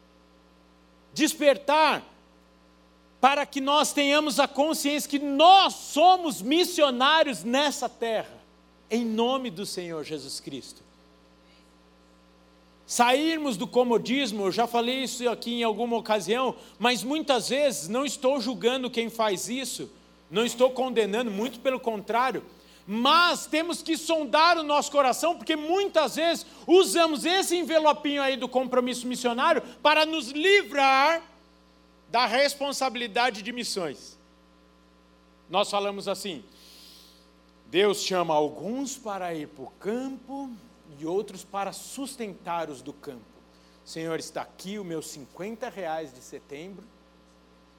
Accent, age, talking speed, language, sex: Brazilian, 50-69, 120 wpm, Portuguese, male